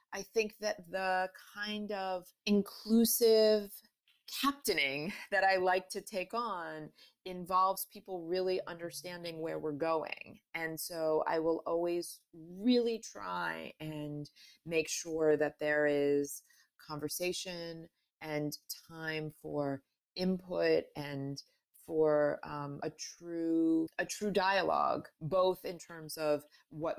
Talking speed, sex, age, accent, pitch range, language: 115 wpm, female, 30-49, American, 155-185 Hz, English